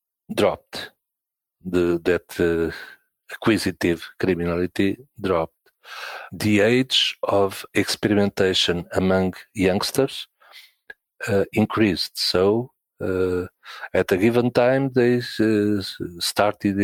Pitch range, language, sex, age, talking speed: 90-115 Hz, English, male, 50-69, 80 wpm